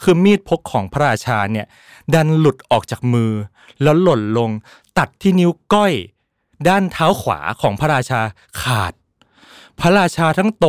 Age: 20-39